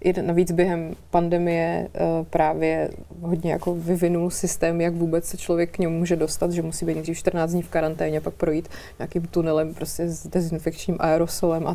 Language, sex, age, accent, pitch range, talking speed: Czech, female, 30-49, native, 165-195 Hz, 175 wpm